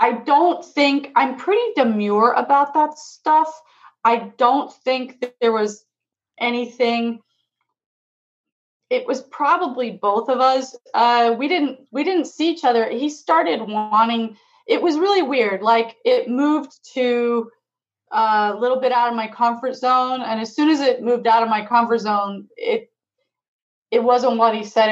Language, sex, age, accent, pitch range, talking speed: English, female, 30-49, American, 210-255 Hz, 160 wpm